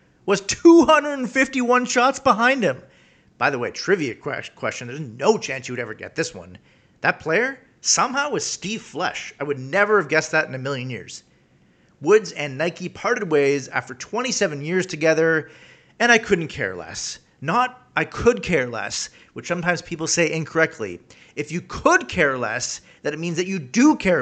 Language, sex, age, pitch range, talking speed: English, male, 40-59, 135-180 Hz, 175 wpm